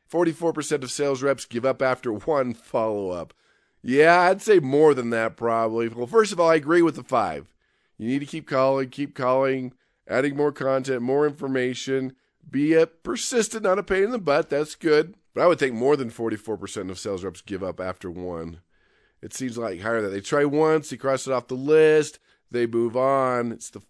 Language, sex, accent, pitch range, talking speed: English, male, American, 120-160 Hz, 200 wpm